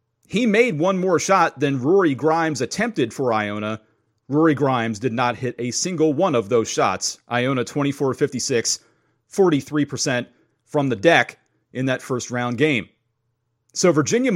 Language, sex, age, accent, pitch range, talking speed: English, male, 30-49, American, 120-165 Hz, 145 wpm